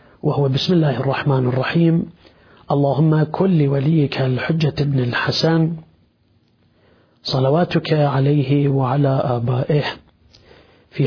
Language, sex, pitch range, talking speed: Arabic, male, 135-165 Hz, 85 wpm